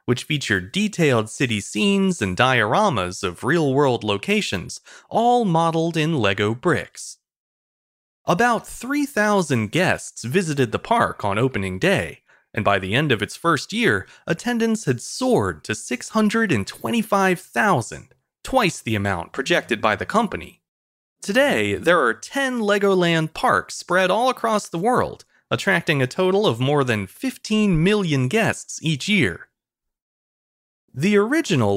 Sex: male